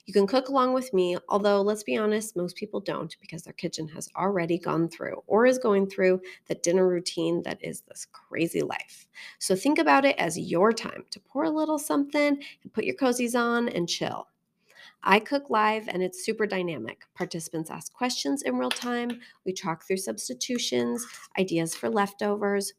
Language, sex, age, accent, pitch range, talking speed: English, female, 30-49, American, 175-220 Hz, 185 wpm